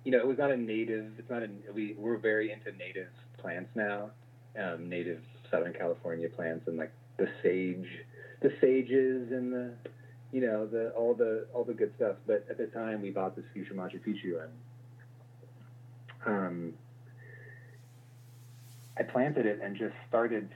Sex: male